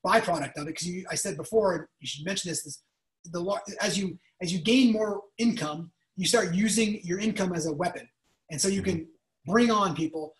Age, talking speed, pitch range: 30-49, 200 wpm, 180-235 Hz